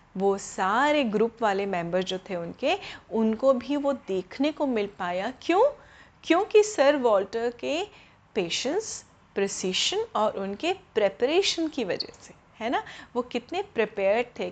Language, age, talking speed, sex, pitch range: Hindi, 30-49, 140 wpm, female, 205-295 Hz